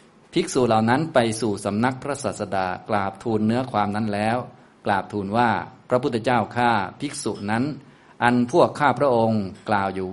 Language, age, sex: Thai, 20-39, male